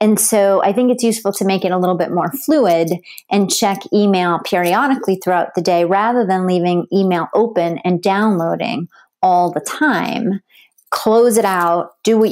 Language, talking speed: English, 175 wpm